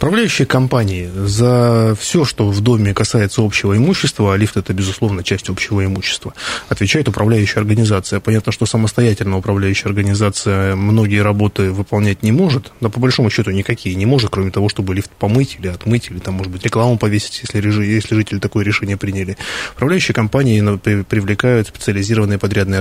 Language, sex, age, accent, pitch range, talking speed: Russian, male, 20-39, native, 100-120 Hz, 165 wpm